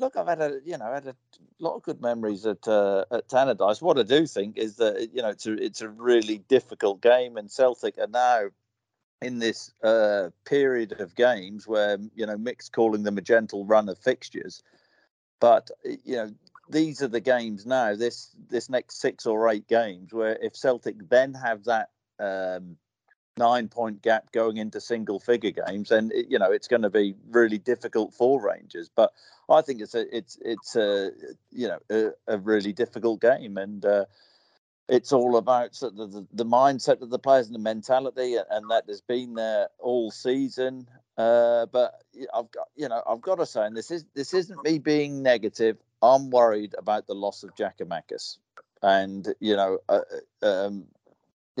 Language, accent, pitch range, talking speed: English, British, 110-135 Hz, 190 wpm